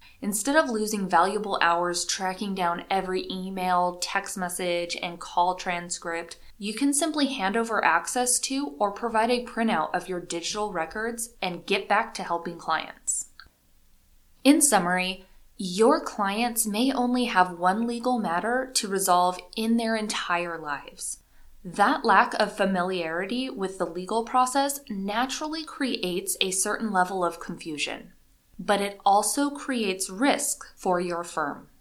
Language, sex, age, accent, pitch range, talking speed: English, female, 20-39, American, 180-235 Hz, 140 wpm